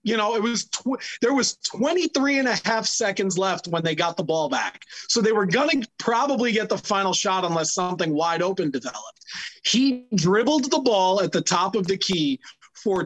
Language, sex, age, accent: English, male, 30-49, American